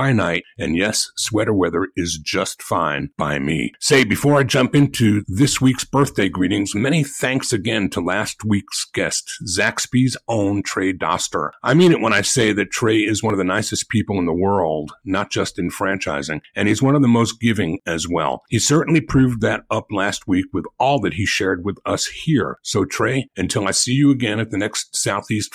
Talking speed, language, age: 205 wpm, English, 50-69